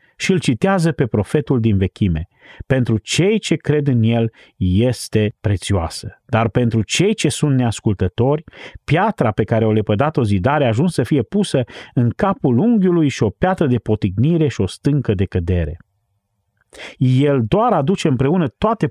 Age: 40-59